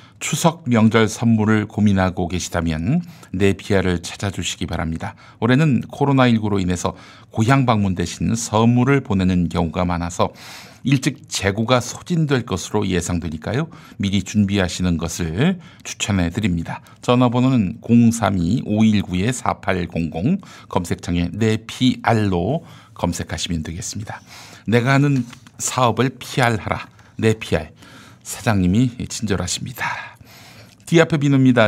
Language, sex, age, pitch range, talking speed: English, male, 50-69, 95-125 Hz, 80 wpm